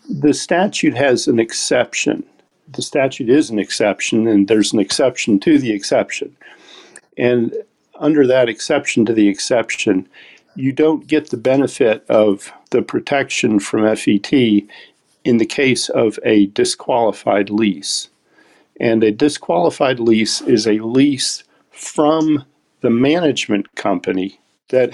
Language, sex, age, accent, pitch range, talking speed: English, male, 50-69, American, 110-145 Hz, 130 wpm